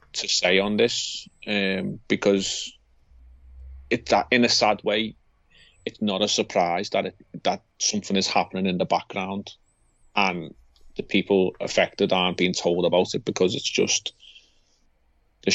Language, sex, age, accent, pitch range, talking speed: English, male, 30-49, British, 90-100 Hz, 145 wpm